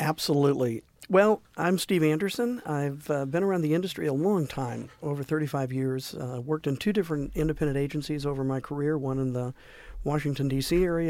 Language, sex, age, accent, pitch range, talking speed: English, male, 50-69, American, 130-150 Hz, 180 wpm